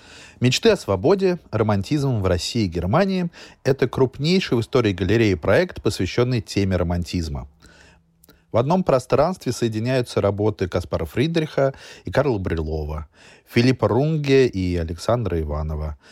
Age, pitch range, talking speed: 30-49, 90-135 Hz, 125 wpm